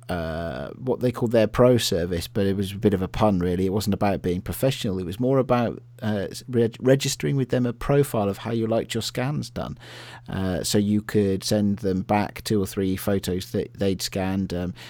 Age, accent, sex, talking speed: 40-59, British, male, 215 wpm